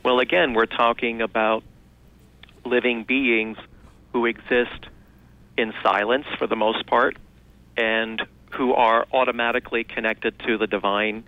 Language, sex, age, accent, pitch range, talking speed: English, male, 40-59, American, 110-120 Hz, 120 wpm